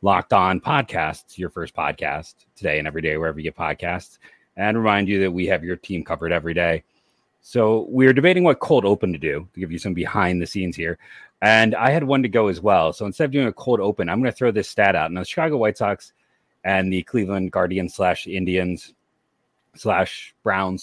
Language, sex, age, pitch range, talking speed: English, male, 30-49, 85-110 Hz, 220 wpm